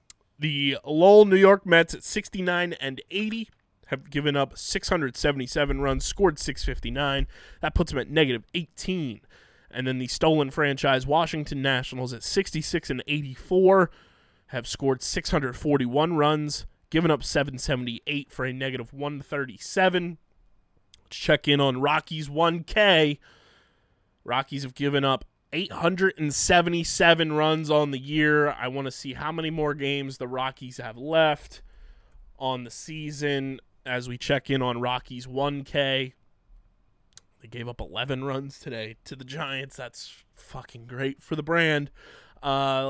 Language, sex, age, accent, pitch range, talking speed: English, male, 20-39, American, 130-160 Hz, 135 wpm